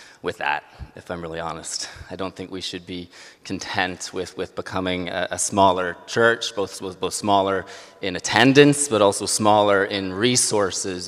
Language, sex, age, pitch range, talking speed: English, male, 30-49, 90-100 Hz, 170 wpm